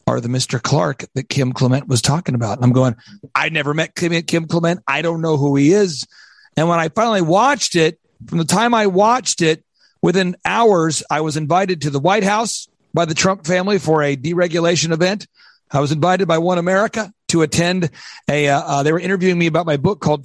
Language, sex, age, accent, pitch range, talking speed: English, male, 40-59, American, 150-185 Hz, 215 wpm